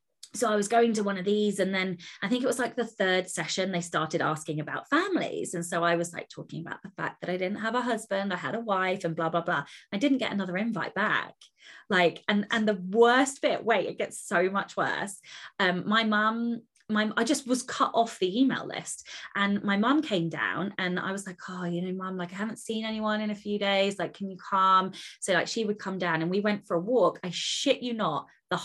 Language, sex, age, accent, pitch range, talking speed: English, female, 20-39, British, 175-245 Hz, 250 wpm